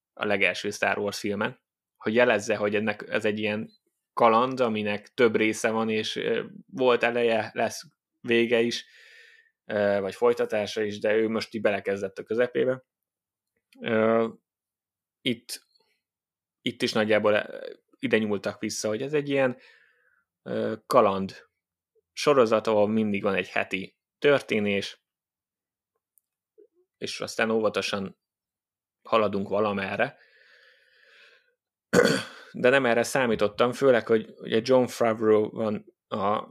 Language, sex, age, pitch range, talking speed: Hungarian, male, 20-39, 105-120 Hz, 110 wpm